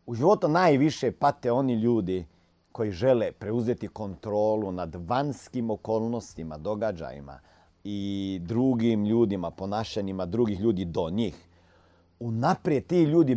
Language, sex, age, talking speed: Croatian, male, 50-69, 110 wpm